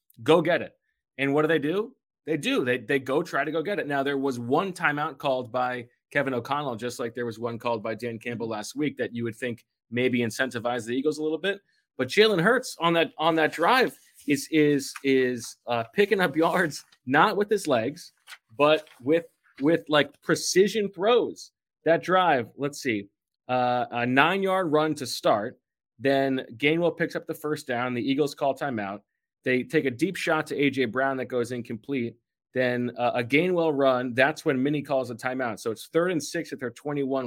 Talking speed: 205 wpm